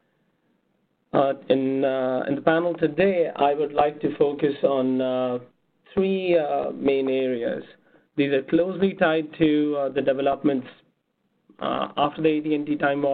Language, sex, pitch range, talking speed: English, male, 130-150 Hz, 130 wpm